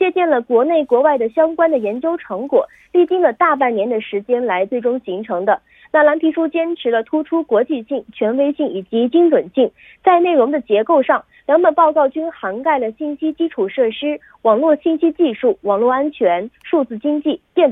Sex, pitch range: female, 235-315 Hz